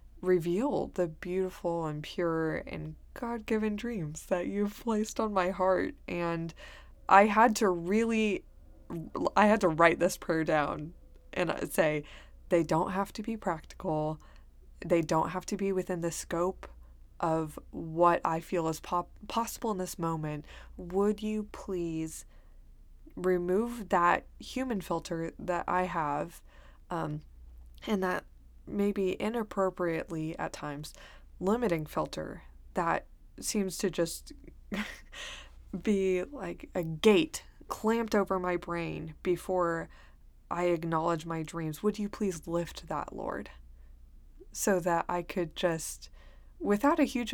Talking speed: 130 wpm